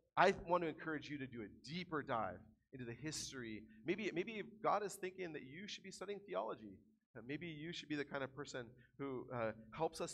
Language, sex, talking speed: English, male, 215 wpm